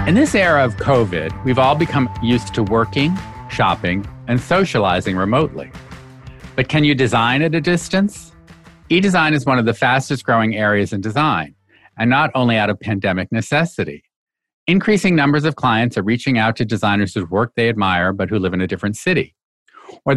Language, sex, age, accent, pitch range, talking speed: English, male, 50-69, American, 105-145 Hz, 175 wpm